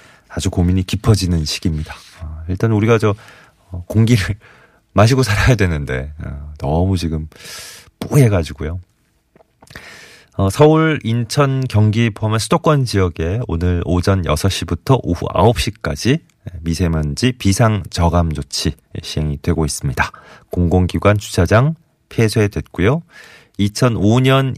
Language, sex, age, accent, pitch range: Korean, male, 30-49, native, 85-120 Hz